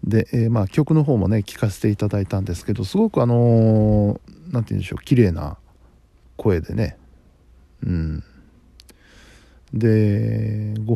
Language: Japanese